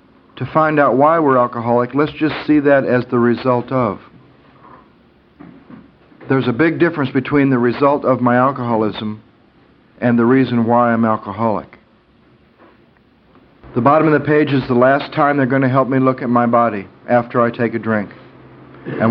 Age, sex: 60-79, male